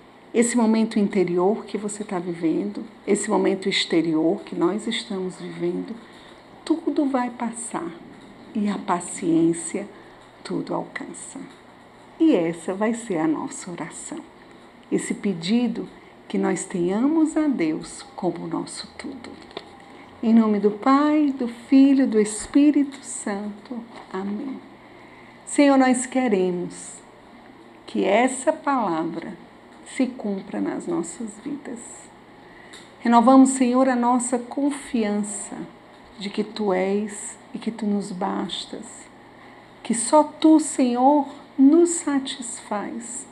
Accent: Brazilian